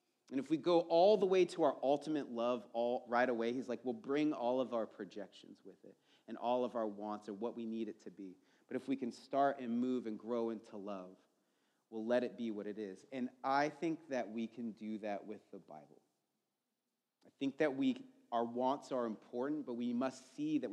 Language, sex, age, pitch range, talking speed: English, male, 30-49, 115-140 Hz, 225 wpm